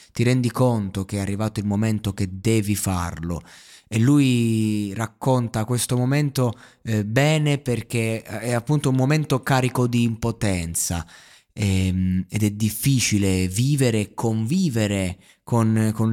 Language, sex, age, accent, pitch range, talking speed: Italian, male, 20-39, native, 110-135 Hz, 125 wpm